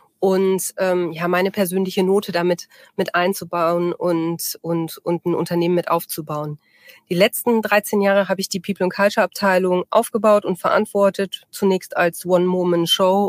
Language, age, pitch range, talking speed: German, 30-49, 175-200 Hz, 135 wpm